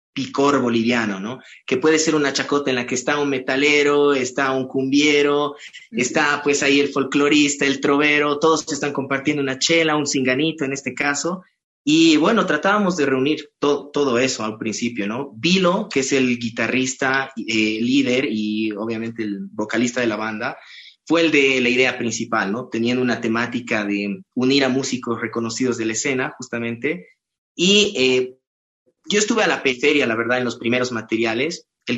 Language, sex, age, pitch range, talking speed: English, male, 30-49, 115-145 Hz, 175 wpm